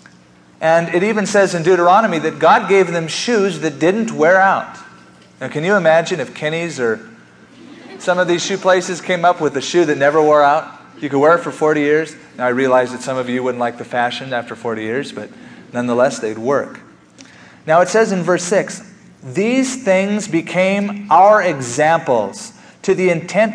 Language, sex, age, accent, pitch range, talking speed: English, male, 30-49, American, 130-185 Hz, 190 wpm